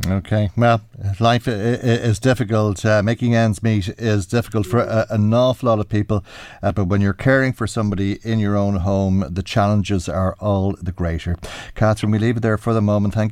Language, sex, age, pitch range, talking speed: English, male, 50-69, 95-115 Hz, 195 wpm